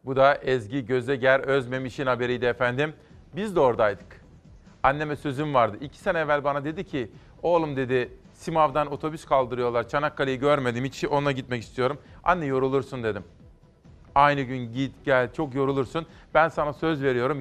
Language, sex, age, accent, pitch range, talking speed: Turkish, male, 40-59, native, 130-150 Hz, 150 wpm